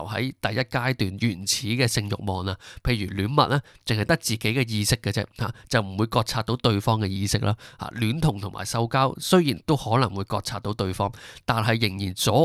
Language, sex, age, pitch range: Chinese, male, 20-39, 105-130 Hz